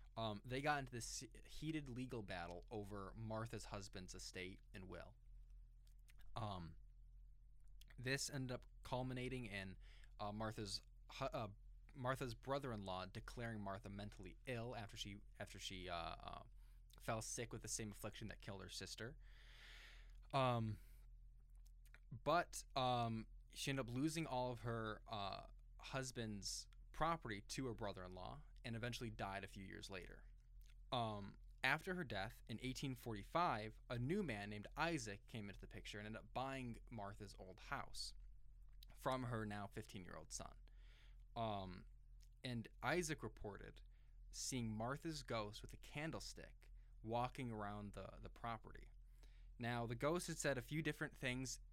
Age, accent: 20-39, American